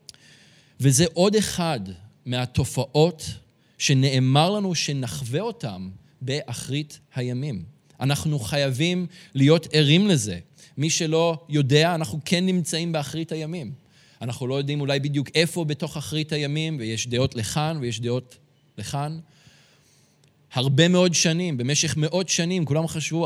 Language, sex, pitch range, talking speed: Hebrew, male, 135-165 Hz, 120 wpm